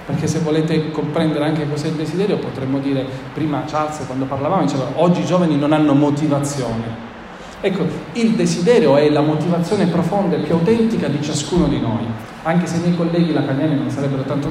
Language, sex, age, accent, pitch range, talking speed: Italian, male, 40-59, native, 140-175 Hz, 180 wpm